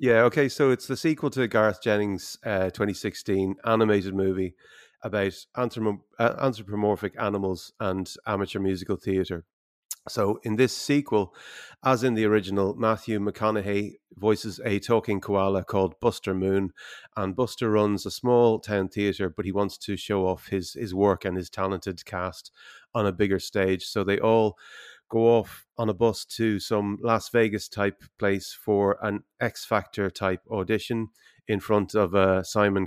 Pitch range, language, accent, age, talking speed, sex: 95-110 Hz, English, Irish, 30-49, 150 wpm, male